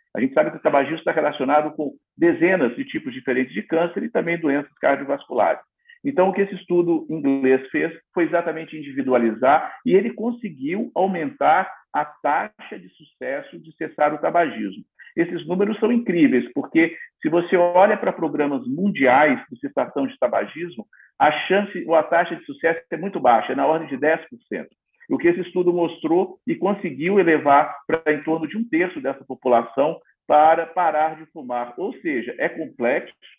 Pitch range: 150-230 Hz